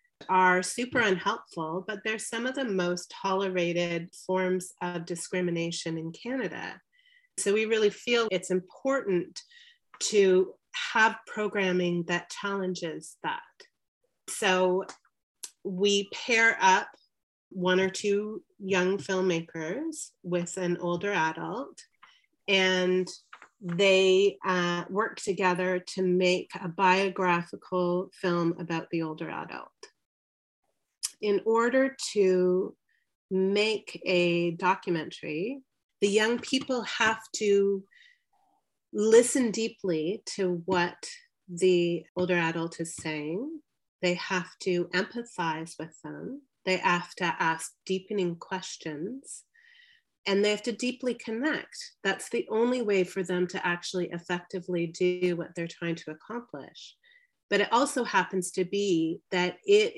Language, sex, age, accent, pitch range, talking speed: English, female, 30-49, American, 175-230 Hz, 115 wpm